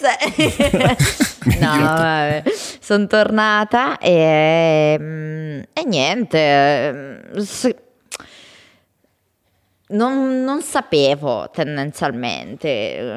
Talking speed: 45 wpm